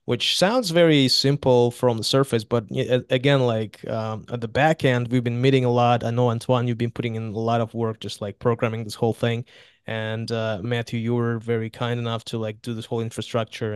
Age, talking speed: 20-39, 220 wpm